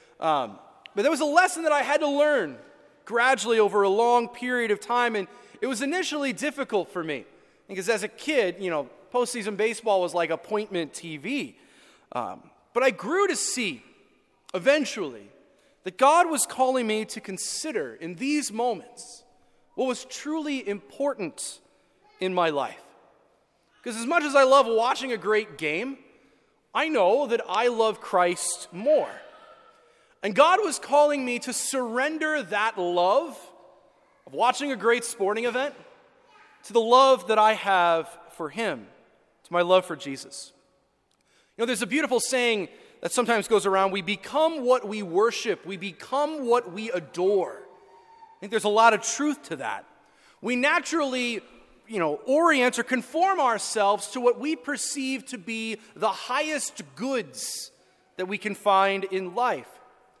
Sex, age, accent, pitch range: male, 30-49, American, 200-280 Hz